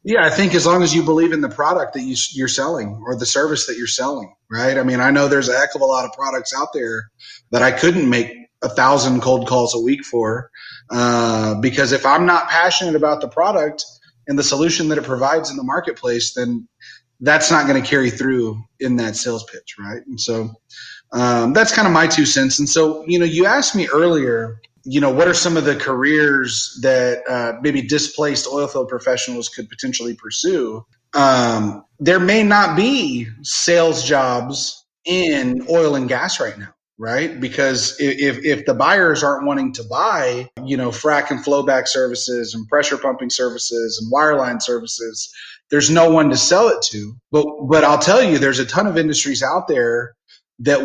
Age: 30-49